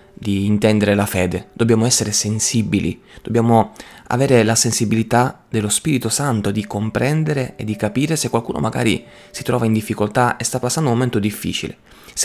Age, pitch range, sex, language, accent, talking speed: 20-39, 110-125 Hz, male, Italian, native, 160 wpm